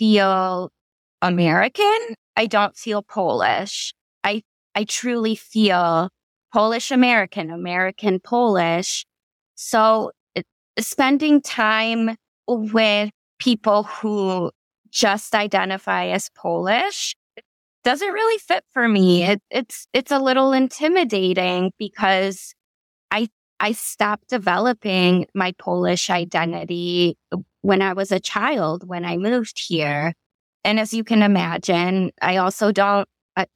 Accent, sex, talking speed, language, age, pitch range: American, female, 105 wpm, English, 20-39, 185-225 Hz